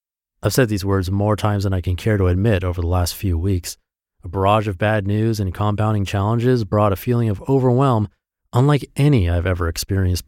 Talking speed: 205 wpm